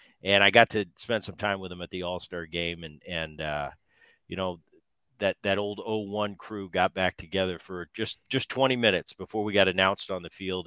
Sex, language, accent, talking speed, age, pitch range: male, English, American, 215 wpm, 50-69, 95-120 Hz